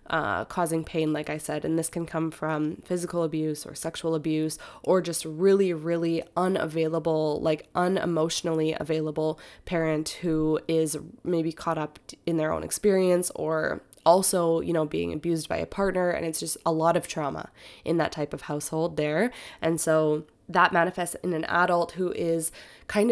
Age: 20-39